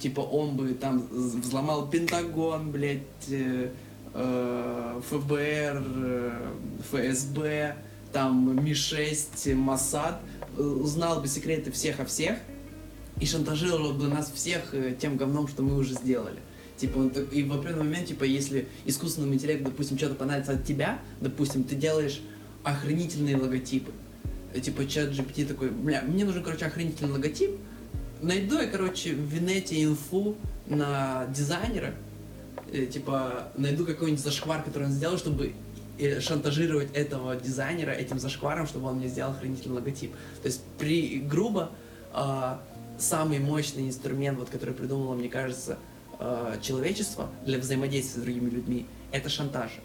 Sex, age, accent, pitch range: male, 20-39, native, 125-150 Hz